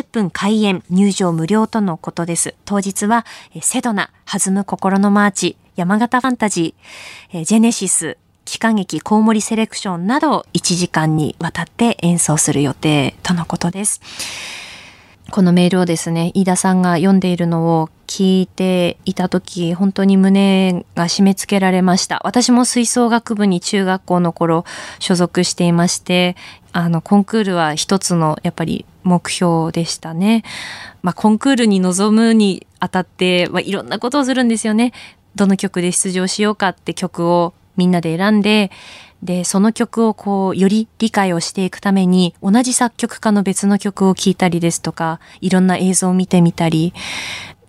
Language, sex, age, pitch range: Japanese, female, 20-39, 175-210 Hz